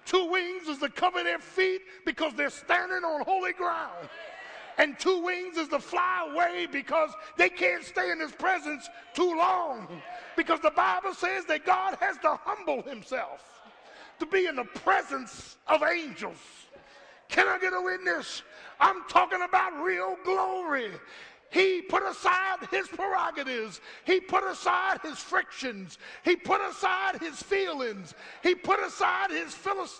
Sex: male